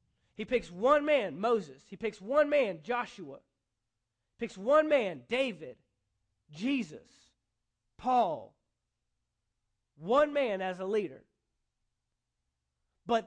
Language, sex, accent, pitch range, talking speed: English, male, American, 170-260 Hz, 100 wpm